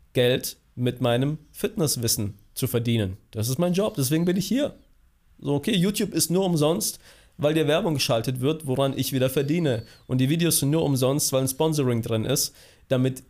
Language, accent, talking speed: German, German, 185 wpm